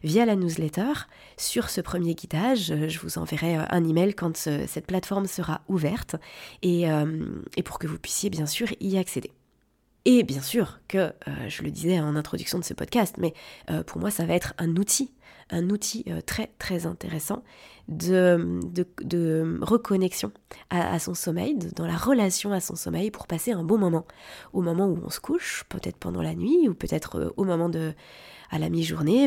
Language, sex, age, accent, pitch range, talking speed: French, female, 20-39, French, 160-205 Hz, 195 wpm